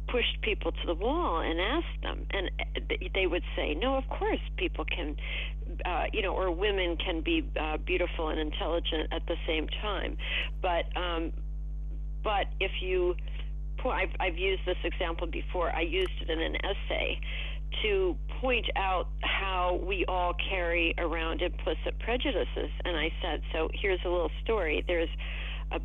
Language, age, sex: English, 50-69, female